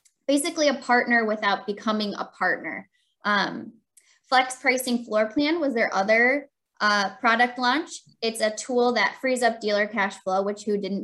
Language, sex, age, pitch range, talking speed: English, female, 10-29, 200-235 Hz, 165 wpm